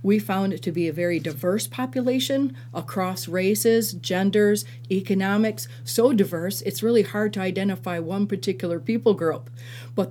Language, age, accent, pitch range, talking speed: English, 50-69, American, 145-200 Hz, 150 wpm